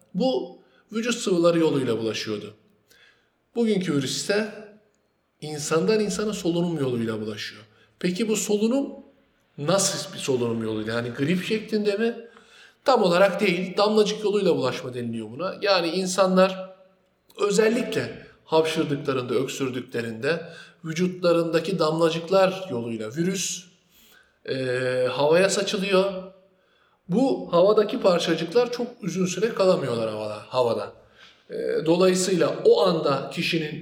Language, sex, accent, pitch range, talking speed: Turkish, male, native, 150-200 Hz, 100 wpm